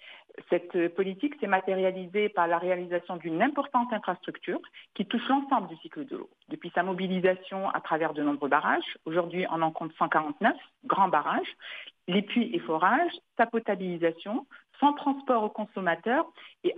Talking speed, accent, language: 155 wpm, French, English